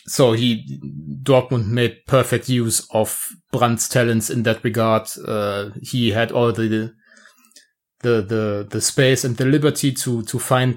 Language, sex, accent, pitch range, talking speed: English, male, German, 110-130 Hz, 150 wpm